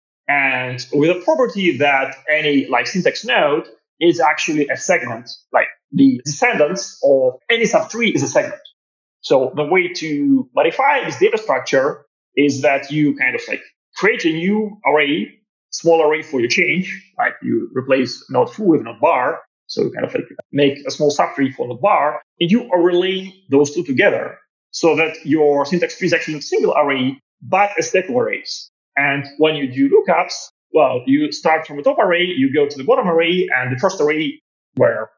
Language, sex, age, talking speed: English, male, 30-49, 185 wpm